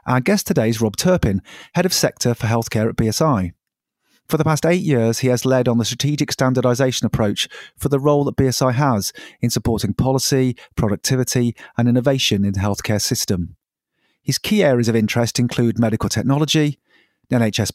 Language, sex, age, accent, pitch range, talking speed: English, male, 40-59, British, 110-150 Hz, 170 wpm